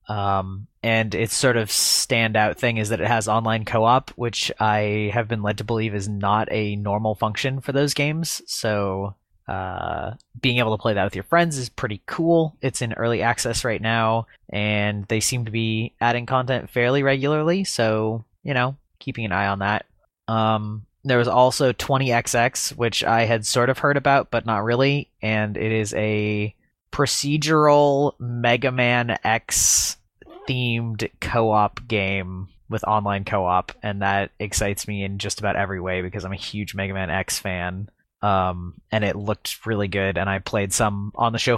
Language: English